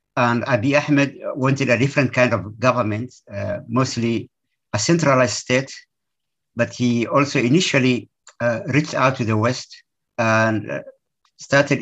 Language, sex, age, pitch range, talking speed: English, male, 50-69, 115-135 Hz, 130 wpm